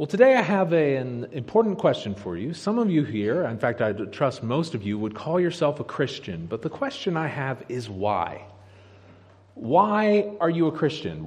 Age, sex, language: 30-49, male, English